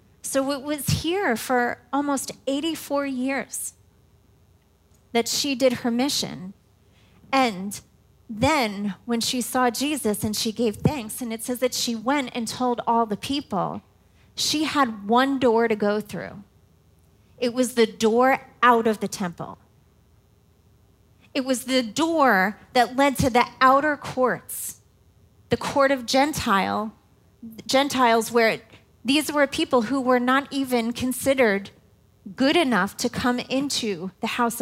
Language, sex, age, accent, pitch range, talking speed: English, female, 30-49, American, 195-275 Hz, 140 wpm